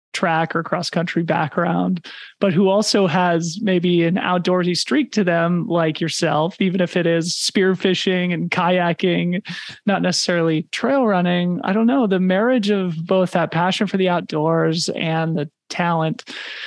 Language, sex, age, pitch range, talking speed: English, male, 30-49, 170-195 Hz, 155 wpm